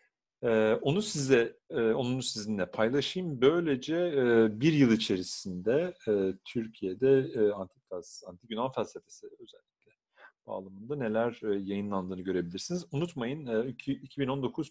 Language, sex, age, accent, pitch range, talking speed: Turkish, male, 40-59, native, 100-135 Hz, 85 wpm